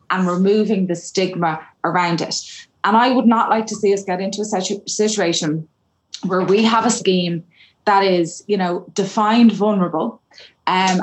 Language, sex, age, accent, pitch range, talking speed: English, female, 20-39, Irish, 165-205 Hz, 165 wpm